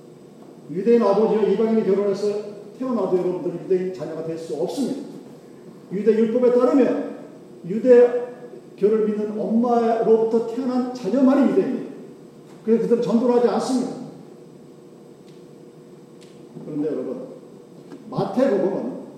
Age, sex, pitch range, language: 40-59, male, 195-245 Hz, Korean